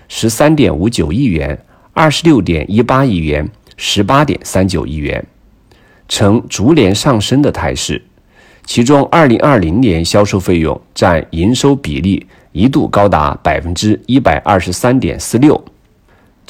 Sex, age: male, 50-69